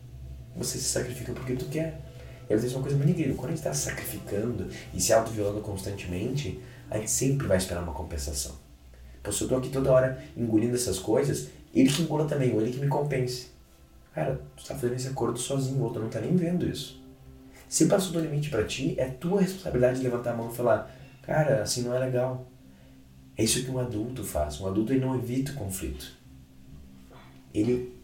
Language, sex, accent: Portuguese, male, Brazilian